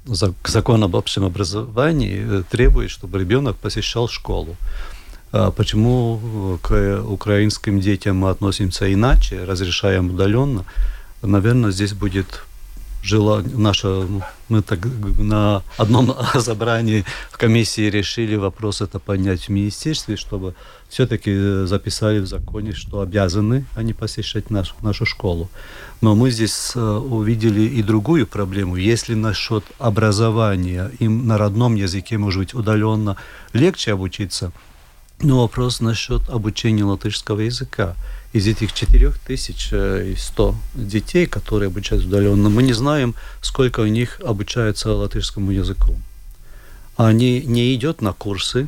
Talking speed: 110 wpm